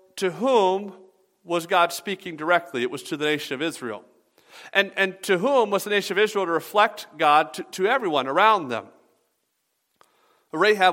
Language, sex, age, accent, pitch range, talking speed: English, male, 50-69, American, 130-175 Hz, 170 wpm